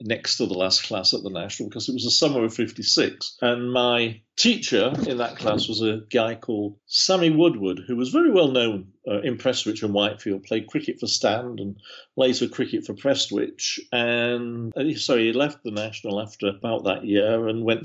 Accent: British